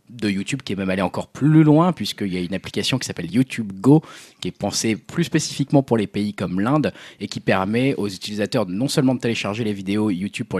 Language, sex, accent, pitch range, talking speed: French, male, French, 95-130 Hz, 230 wpm